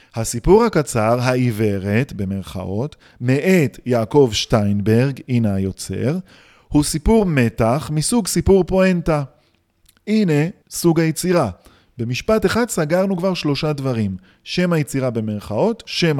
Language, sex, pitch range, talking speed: Hebrew, male, 115-175 Hz, 105 wpm